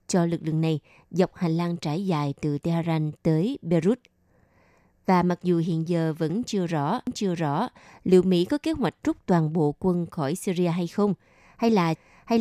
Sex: female